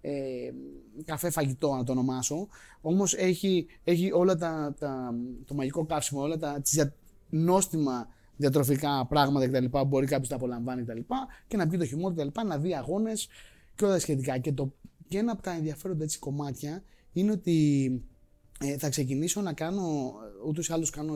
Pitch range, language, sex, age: 140-170 Hz, Greek, male, 20-39